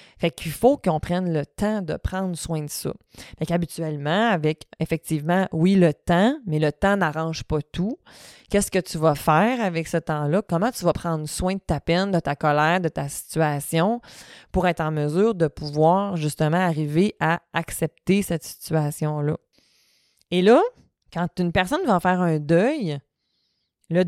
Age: 20-39